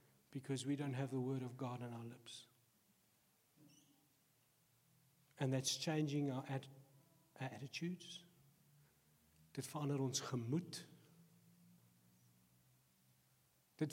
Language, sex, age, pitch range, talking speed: English, male, 60-79, 130-185 Hz, 100 wpm